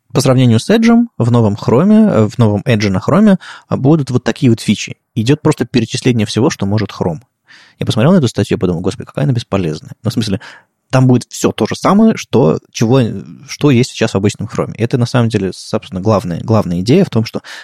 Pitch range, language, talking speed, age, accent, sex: 105-130 Hz, Russian, 210 wpm, 20-39, native, male